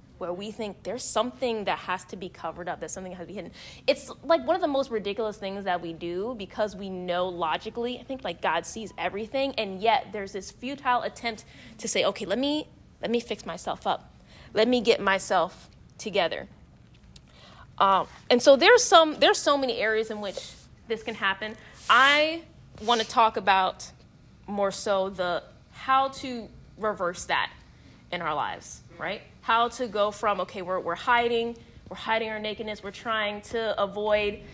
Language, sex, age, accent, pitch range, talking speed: English, female, 20-39, American, 190-240 Hz, 185 wpm